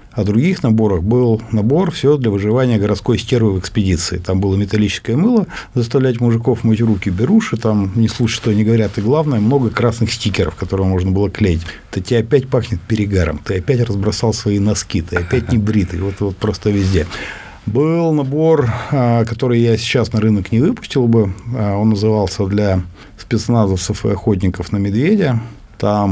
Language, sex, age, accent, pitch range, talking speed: Russian, male, 50-69, native, 100-120 Hz, 170 wpm